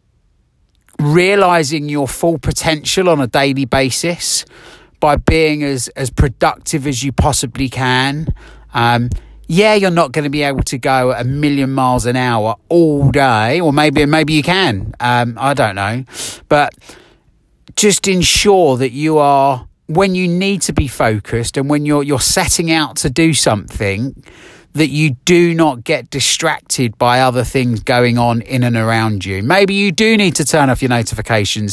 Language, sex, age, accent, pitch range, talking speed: English, male, 30-49, British, 115-150 Hz, 170 wpm